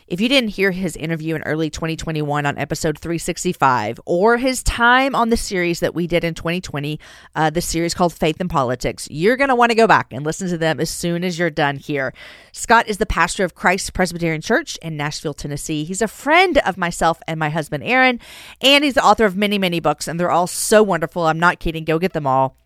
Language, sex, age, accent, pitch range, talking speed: English, female, 40-59, American, 160-220 Hz, 230 wpm